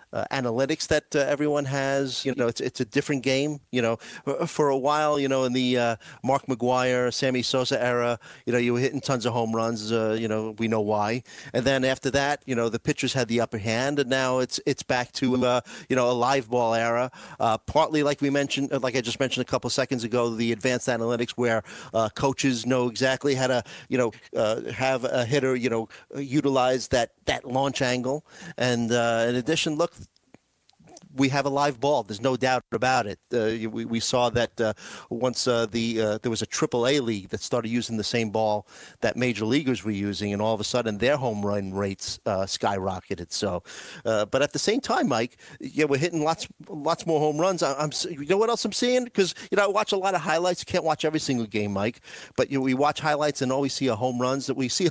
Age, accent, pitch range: 40-59, American, 115-145 Hz